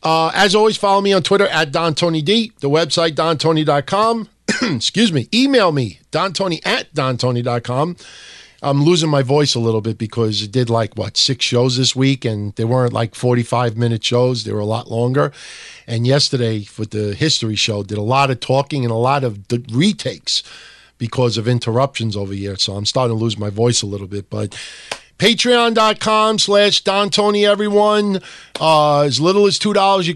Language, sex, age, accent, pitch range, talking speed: English, male, 50-69, American, 115-165 Hz, 180 wpm